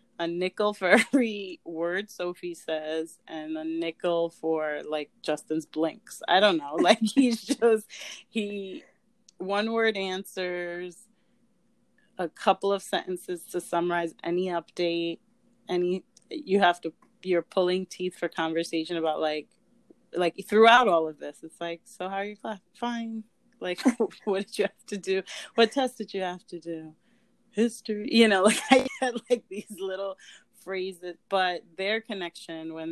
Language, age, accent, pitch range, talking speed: English, 30-49, American, 165-220 Hz, 150 wpm